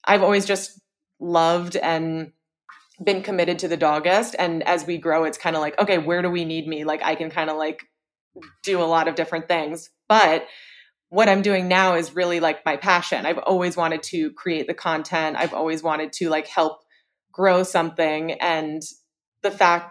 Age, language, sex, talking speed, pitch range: 20-39, English, female, 195 wpm, 155-180 Hz